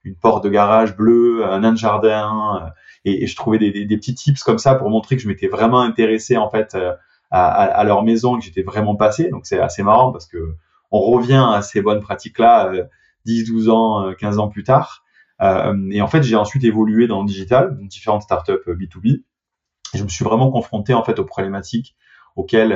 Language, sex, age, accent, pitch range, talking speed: French, male, 20-39, French, 95-115 Hz, 220 wpm